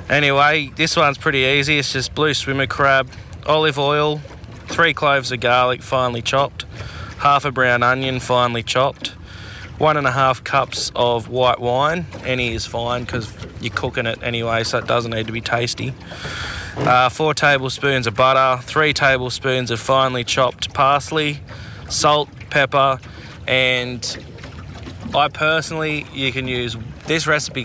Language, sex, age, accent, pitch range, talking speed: English, male, 20-39, Australian, 115-135 Hz, 150 wpm